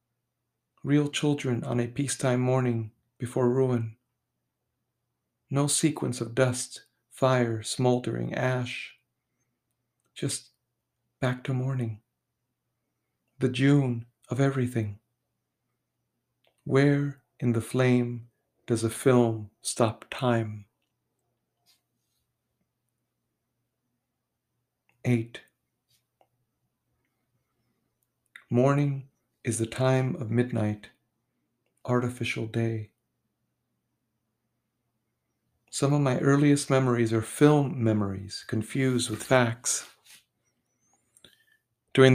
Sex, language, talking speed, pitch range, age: male, English, 75 wpm, 115-130 Hz, 50-69